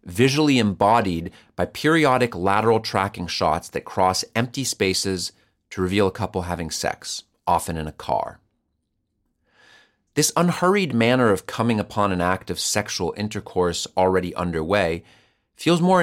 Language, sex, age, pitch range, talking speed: English, male, 40-59, 90-120 Hz, 135 wpm